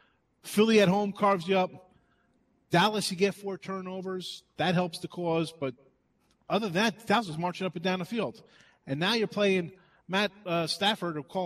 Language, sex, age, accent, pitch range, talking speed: English, male, 30-49, American, 170-215 Hz, 190 wpm